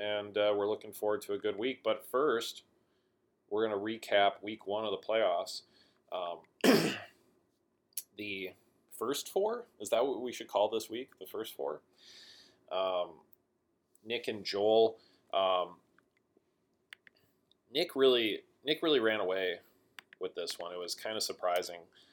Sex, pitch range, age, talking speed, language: male, 100-140 Hz, 20-39, 145 wpm, English